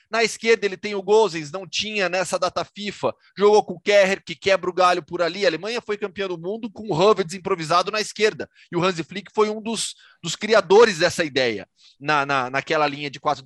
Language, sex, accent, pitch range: Portuguese, male, Brazilian, 160-210 Hz